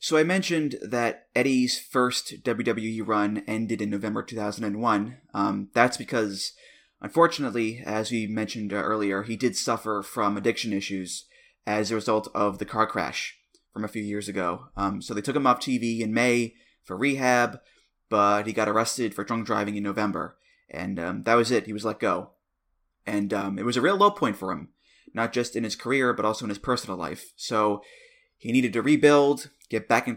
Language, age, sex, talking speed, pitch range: English, 20-39, male, 190 wpm, 105-125 Hz